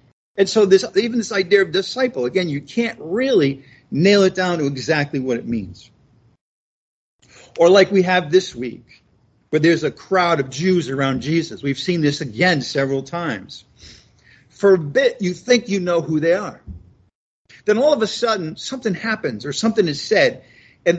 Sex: male